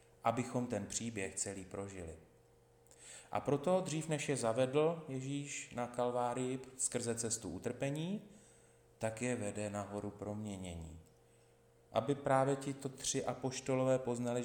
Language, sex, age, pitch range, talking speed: Slovak, male, 30-49, 115-130 Hz, 120 wpm